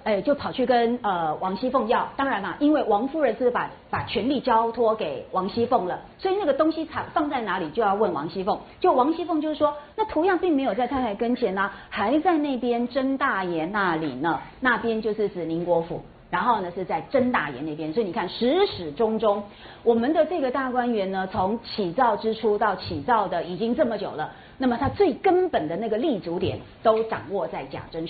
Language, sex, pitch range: Chinese, female, 195-270 Hz